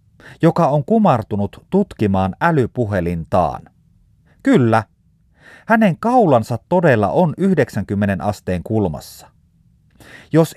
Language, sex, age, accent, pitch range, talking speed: Finnish, male, 30-49, native, 105-175 Hz, 80 wpm